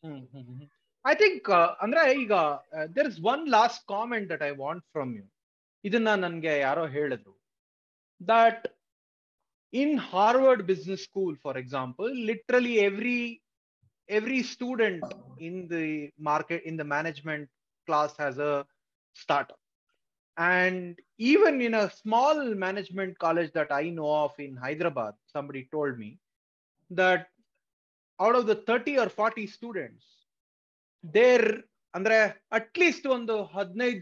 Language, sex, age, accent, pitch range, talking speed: Kannada, male, 30-49, native, 150-225 Hz, 125 wpm